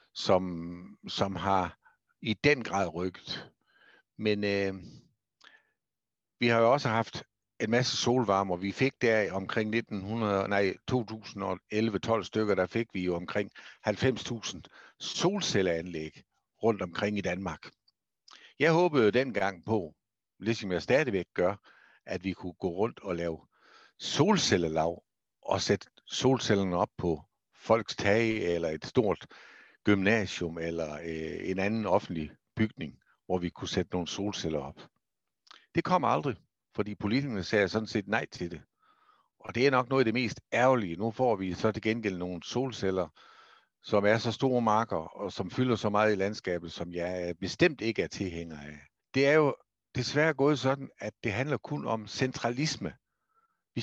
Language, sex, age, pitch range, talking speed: Danish, male, 60-79, 95-120 Hz, 150 wpm